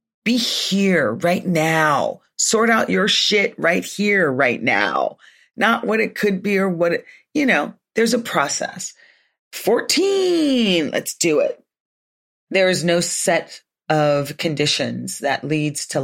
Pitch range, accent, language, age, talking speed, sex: 150-225 Hz, American, English, 40-59, 140 wpm, female